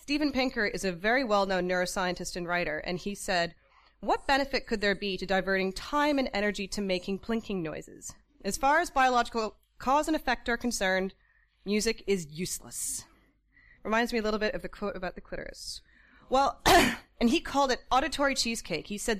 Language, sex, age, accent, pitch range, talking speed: English, female, 30-49, American, 185-255 Hz, 180 wpm